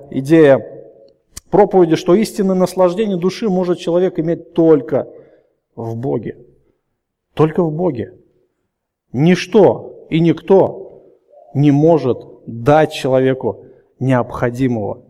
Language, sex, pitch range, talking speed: Russian, male, 150-215 Hz, 90 wpm